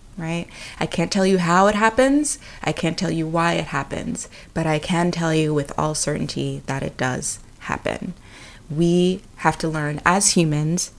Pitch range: 155-185 Hz